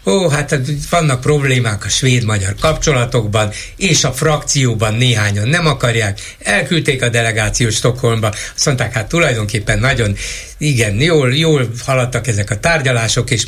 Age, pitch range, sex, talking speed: 60-79, 115-150 Hz, male, 140 wpm